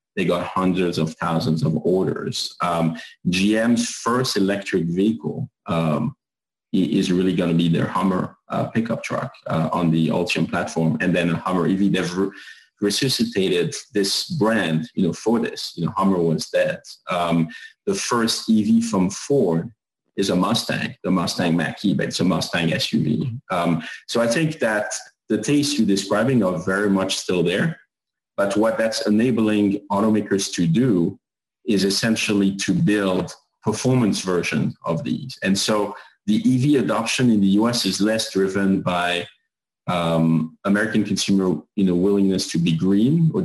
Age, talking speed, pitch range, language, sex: 30-49, 155 wpm, 90-110 Hz, English, male